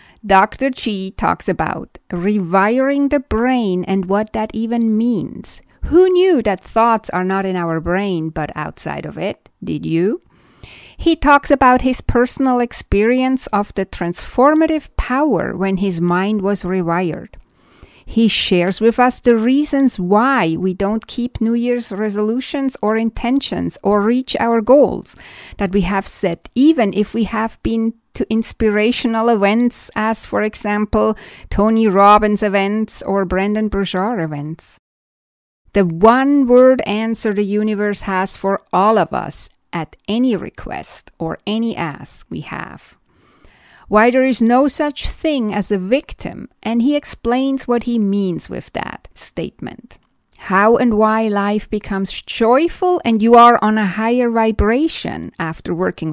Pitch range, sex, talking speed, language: 195-245 Hz, female, 145 wpm, English